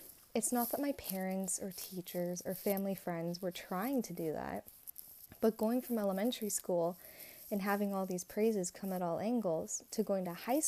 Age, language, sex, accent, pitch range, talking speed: 20-39, English, female, American, 185-240 Hz, 185 wpm